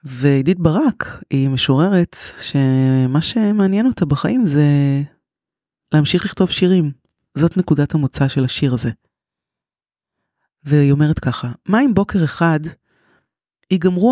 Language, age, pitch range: Hebrew, 30-49, 140-180 Hz